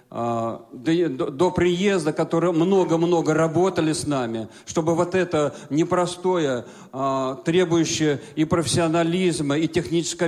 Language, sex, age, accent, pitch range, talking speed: Russian, male, 40-59, native, 130-170 Hz, 95 wpm